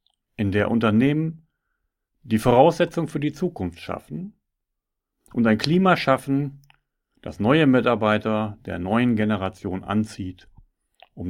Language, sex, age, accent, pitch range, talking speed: German, male, 40-59, German, 90-130 Hz, 110 wpm